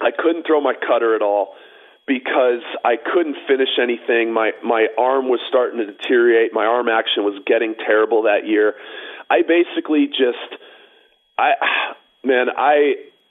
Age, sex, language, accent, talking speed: 40-59, male, English, American, 150 wpm